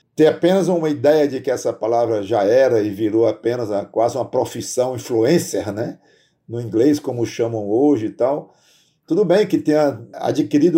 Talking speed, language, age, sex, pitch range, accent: 175 wpm, Portuguese, 50-69, male, 120-155 Hz, Brazilian